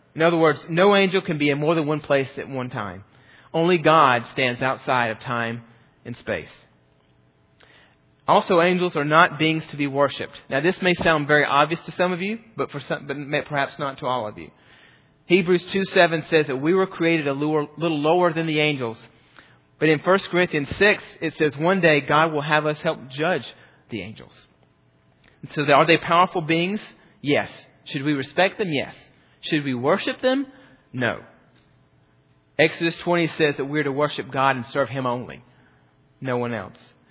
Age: 40-59